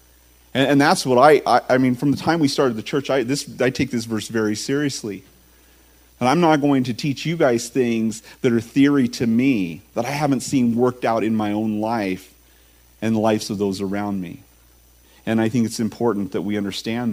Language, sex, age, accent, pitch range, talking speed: English, male, 40-59, American, 100-130 Hz, 210 wpm